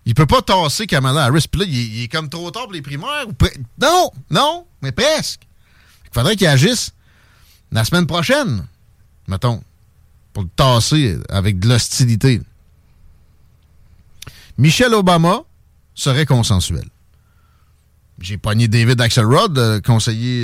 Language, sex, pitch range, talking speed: French, male, 105-145 Hz, 130 wpm